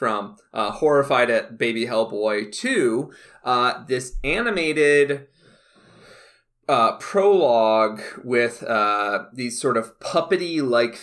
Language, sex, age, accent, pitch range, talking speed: English, male, 30-49, American, 110-145 Hz, 100 wpm